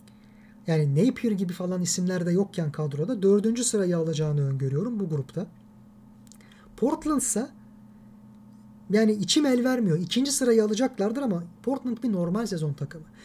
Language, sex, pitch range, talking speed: Turkish, male, 175-230 Hz, 130 wpm